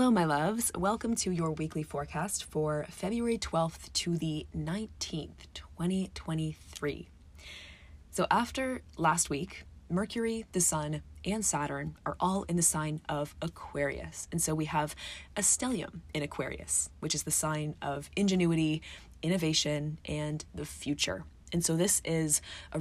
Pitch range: 145-170 Hz